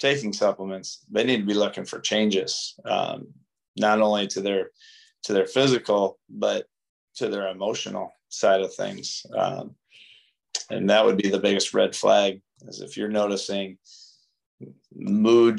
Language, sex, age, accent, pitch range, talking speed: English, male, 30-49, American, 95-115 Hz, 145 wpm